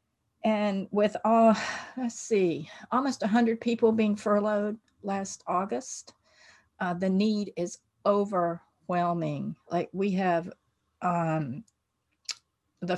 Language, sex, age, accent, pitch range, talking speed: English, female, 50-69, American, 165-205 Hz, 100 wpm